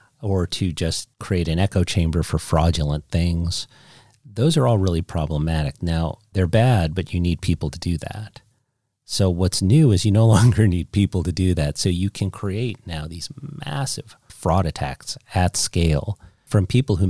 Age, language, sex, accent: 40-59, English, male, American